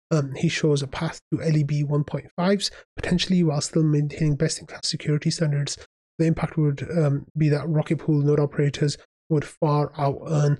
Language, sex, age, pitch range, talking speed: English, male, 20-39, 145-165 Hz, 155 wpm